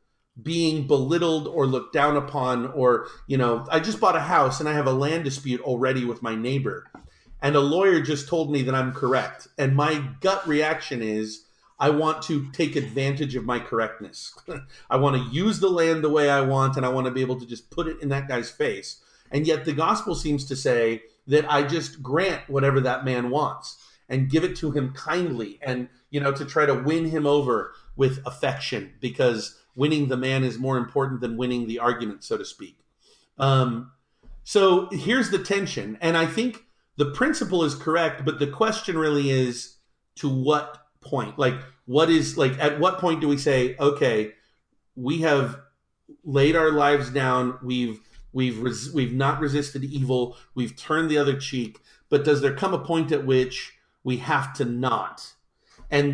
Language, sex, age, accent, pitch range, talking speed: English, male, 40-59, American, 130-155 Hz, 190 wpm